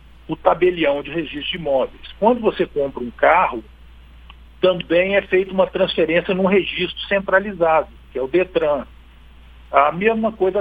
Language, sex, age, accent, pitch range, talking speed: Portuguese, male, 50-69, Brazilian, 160-200 Hz, 145 wpm